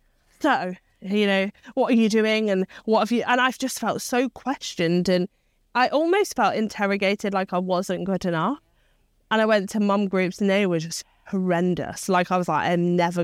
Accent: British